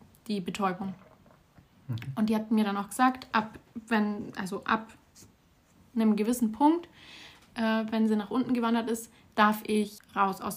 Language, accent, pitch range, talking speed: German, German, 205-240 Hz, 155 wpm